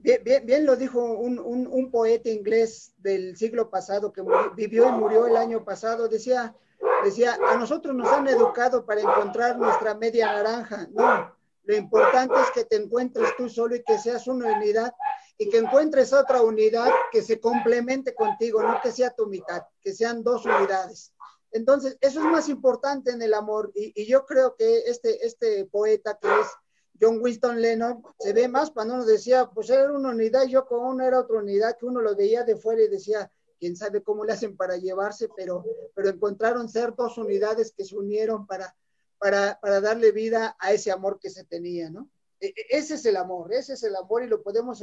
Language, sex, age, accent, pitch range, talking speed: English, male, 40-59, Mexican, 210-275 Hz, 200 wpm